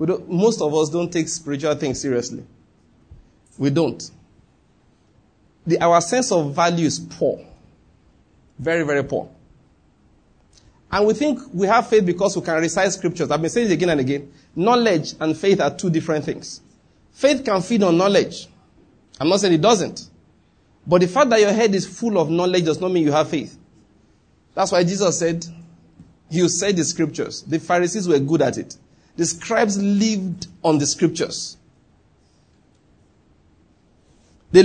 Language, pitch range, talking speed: English, 155-215 Hz, 160 wpm